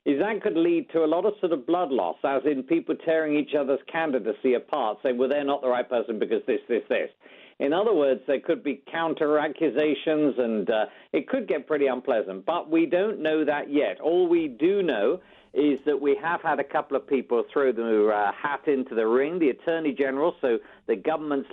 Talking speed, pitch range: 215 wpm, 135-190 Hz